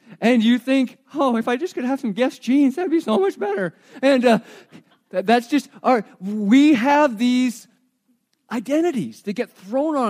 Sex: male